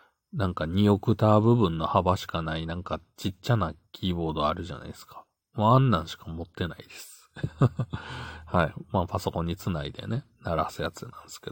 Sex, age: male, 40-59